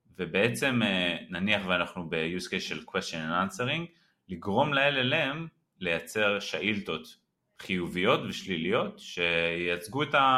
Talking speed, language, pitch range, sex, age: 100 wpm, Hebrew, 85-125 Hz, male, 30-49